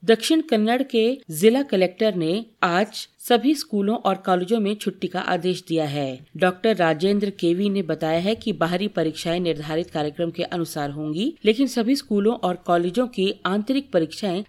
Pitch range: 170-225 Hz